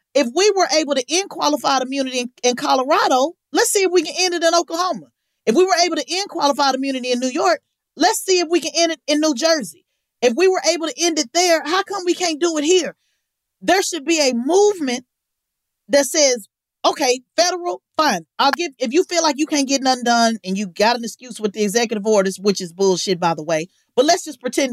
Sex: female